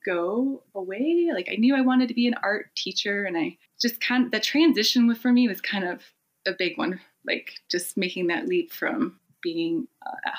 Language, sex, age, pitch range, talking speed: English, female, 20-39, 185-265 Hz, 200 wpm